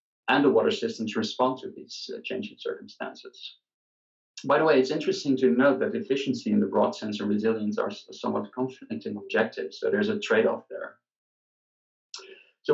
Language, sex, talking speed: English, male, 170 wpm